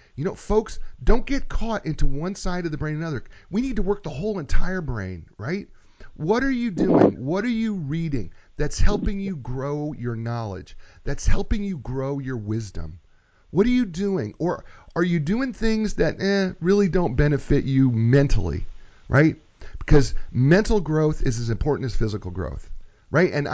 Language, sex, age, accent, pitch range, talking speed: English, male, 40-59, American, 115-170 Hz, 180 wpm